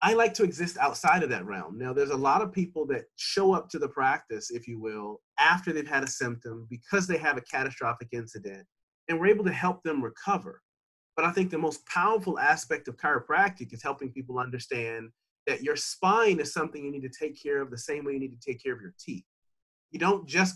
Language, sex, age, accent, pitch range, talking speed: English, male, 40-59, American, 130-190 Hz, 230 wpm